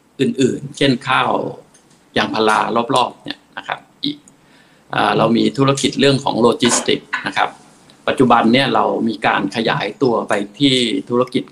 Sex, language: male, Thai